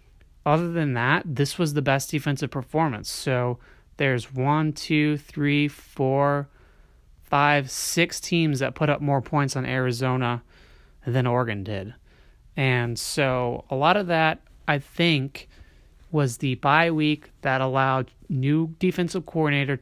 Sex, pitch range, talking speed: male, 125-150 Hz, 135 wpm